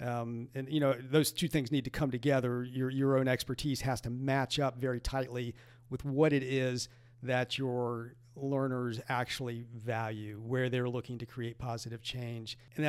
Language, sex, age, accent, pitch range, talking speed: English, male, 50-69, American, 125-145 Hz, 175 wpm